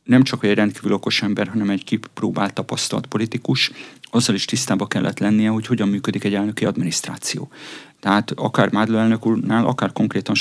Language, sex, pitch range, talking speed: Hungarian, male, 100-120 Hz, 160 wpm